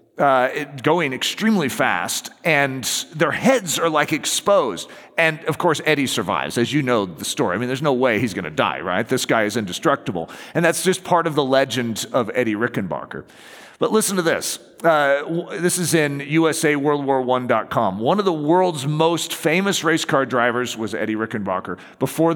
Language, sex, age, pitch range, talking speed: English, male, 40-59, 120-165 Hz, 185 wpm